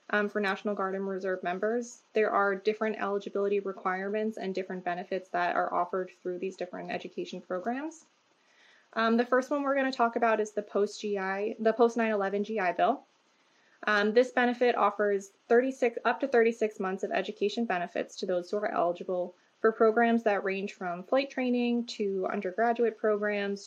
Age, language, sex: 20-39, English, female